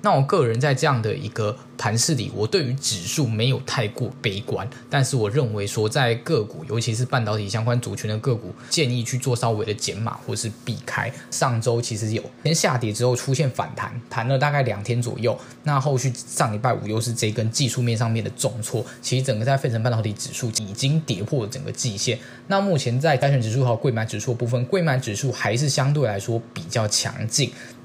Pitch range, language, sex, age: 115-135 Hz, Chinese, male, 10-29